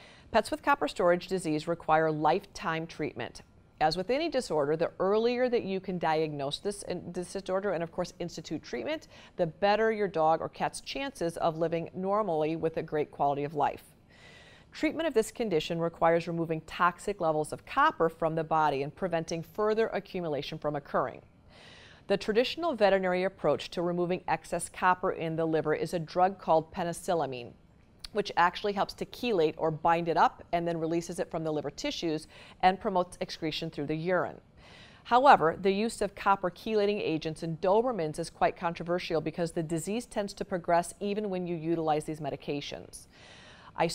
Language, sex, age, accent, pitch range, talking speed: English, female, 40-59, American, 160-200 Hz, 170 wpm